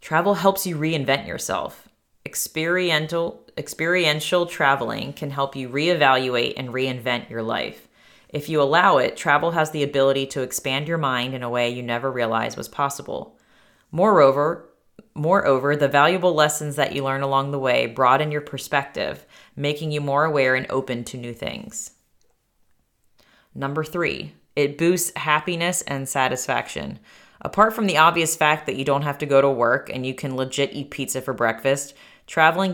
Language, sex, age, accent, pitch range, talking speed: English, female, 30-49, American, 130-155 Hz, 160 wpm